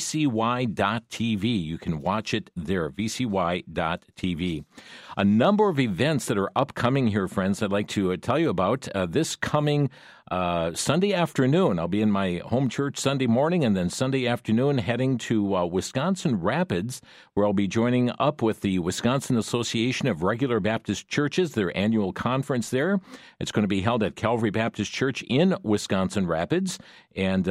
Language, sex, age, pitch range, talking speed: English, male, 50-69, 100-140 Hz, 165 wpm